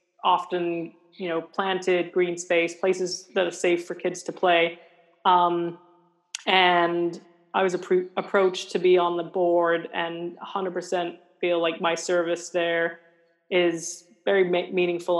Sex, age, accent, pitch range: female, 20-39, American, 170-185 Hz